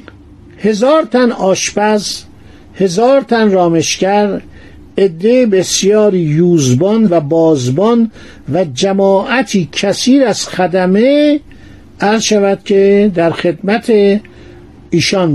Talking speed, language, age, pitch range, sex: 85 wpm, Persian, 50-69, 165-215 Hz, male